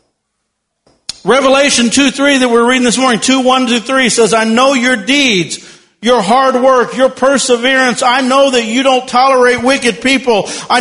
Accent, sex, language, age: American, male, English, 50-69